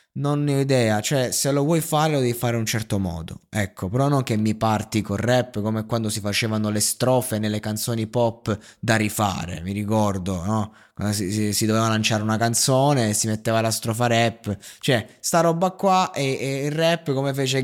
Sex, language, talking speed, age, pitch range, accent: male, Italian, 210 wpm, 20-39, 105-130 Hz, native